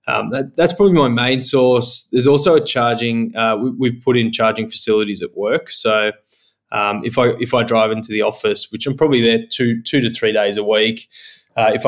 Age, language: 20-39, English